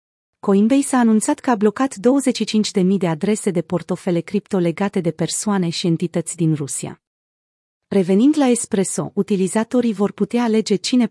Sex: female